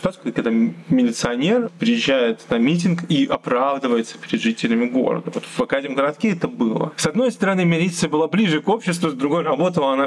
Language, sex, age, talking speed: Russian, male, 20-39, 165 wpm